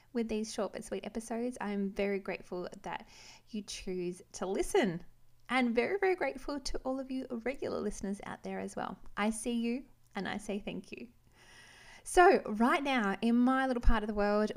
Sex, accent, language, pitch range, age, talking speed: female, Australian, English, 190-250 Hz, 20-39, 190 wpm